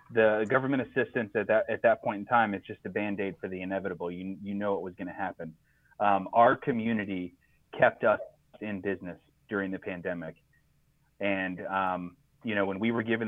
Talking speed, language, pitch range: 190 wpm, English, 100-125 Hz